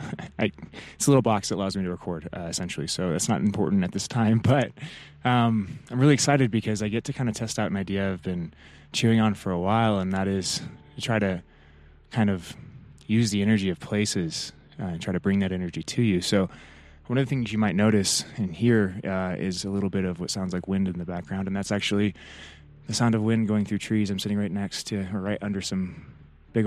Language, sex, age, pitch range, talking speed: English, male, 20-39, 90-105 Hz, 240 wpm